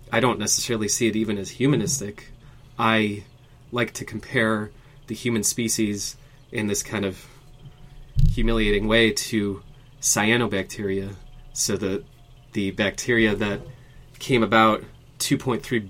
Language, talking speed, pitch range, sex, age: English, 115 wpm, 105-130 Hz, male, 30-49